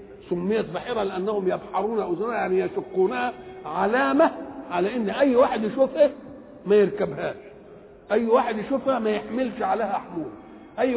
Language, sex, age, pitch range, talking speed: English, male, 60-79, 190-225 Hz, 125 wpm